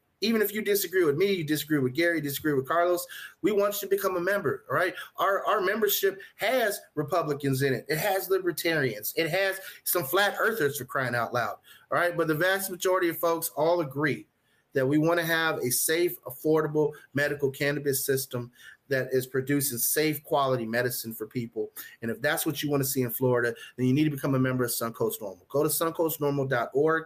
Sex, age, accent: male, 30-49, American